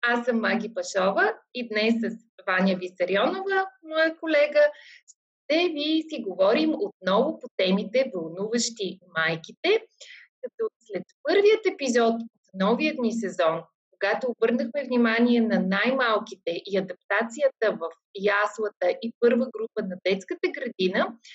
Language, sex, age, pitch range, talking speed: Bulgarian, female, 30-49, 205-280 Hz, 120 wpm